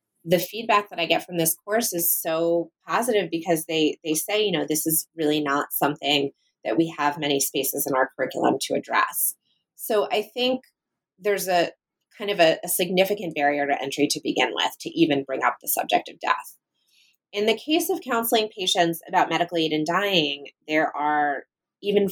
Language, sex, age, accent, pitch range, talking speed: English, female, 20-39, American, 150-195 Hz, 190 wpm